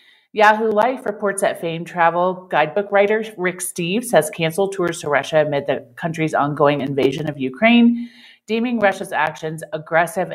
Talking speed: 150 wpm